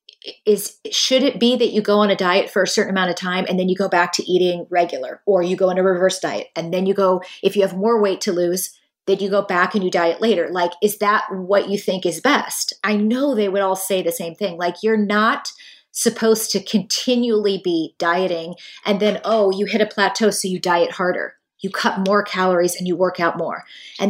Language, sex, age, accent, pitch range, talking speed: English, female, 30-49, American, 190-230 Hz, 240 wpm